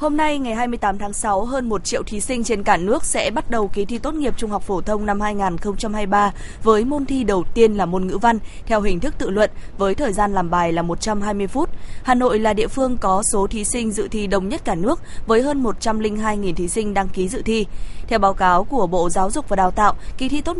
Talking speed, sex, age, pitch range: 250 wpm, female, 20-39, 195-240 Hz